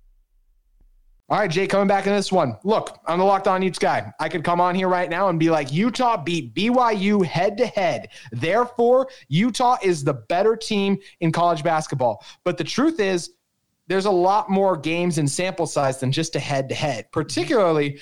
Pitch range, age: 155-205 Hz, 30-49